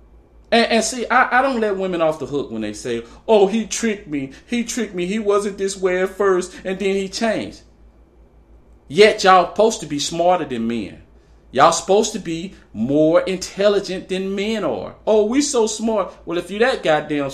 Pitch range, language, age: 140-195 Hz, English, 40-59